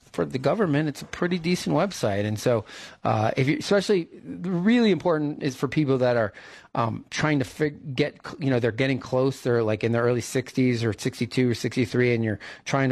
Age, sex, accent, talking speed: 30-49, male, American, 205 wpm